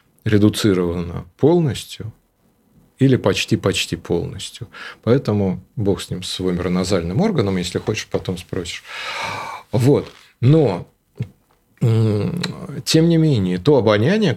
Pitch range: 105-150 Hz